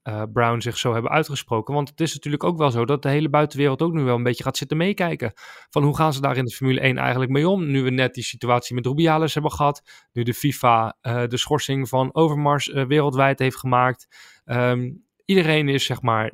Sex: male